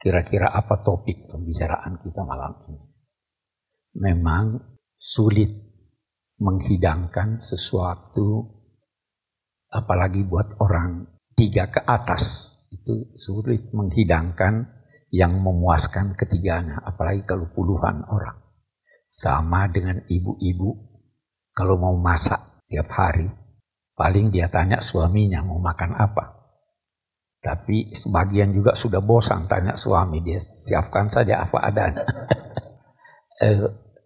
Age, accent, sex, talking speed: 50-69, native, male, 95 wpm